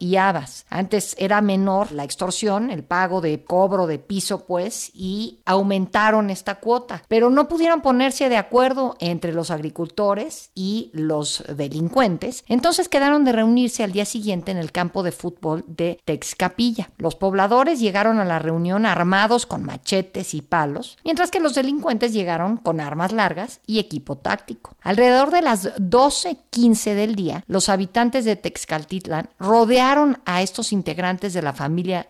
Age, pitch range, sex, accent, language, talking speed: 50-69, 175-235 Hz, female, Mexican, Spanish, 155 wpm